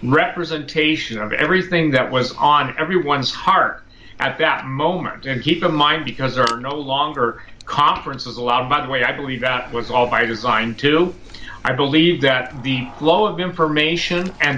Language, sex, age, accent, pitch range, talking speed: English, male, 50-69, American, 130-160 Hz, 170 wpm